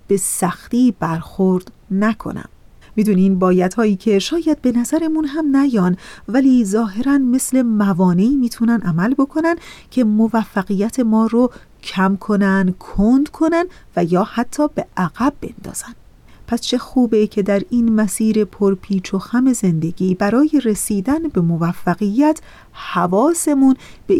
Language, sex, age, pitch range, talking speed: Persian, female, 30-49, 190-255 Hz, 125 wpm